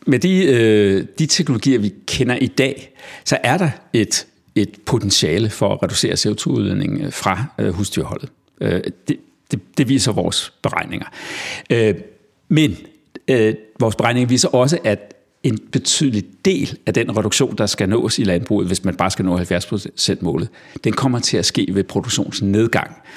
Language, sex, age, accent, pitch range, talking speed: Danish, male, 60-79, native, 105-135 Hz, 150 wpm